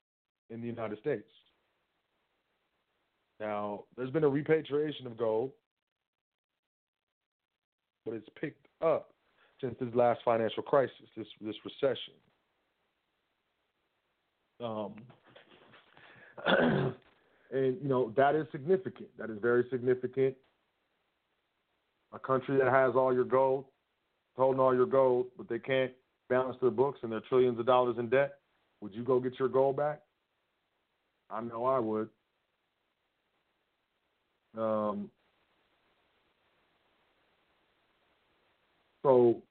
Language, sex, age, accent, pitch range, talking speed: English, male, 40-59, American, 125-140 Hz, 110 wpm